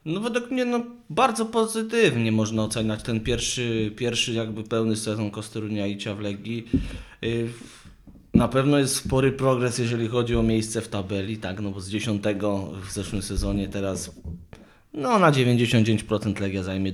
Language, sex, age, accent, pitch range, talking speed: Polish, male, 20-39, native, 100-125 Hz, 150 wpm